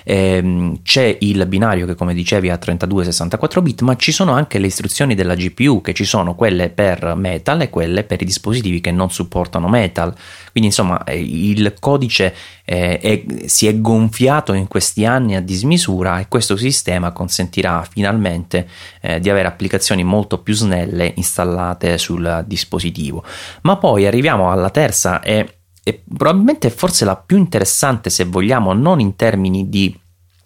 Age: 30-49